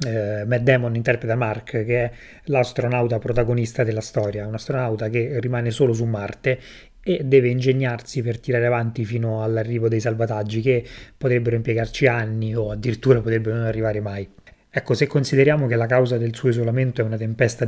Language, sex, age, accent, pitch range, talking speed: Italian, male, 30-49, native, 110-125 Hz, 165 wpm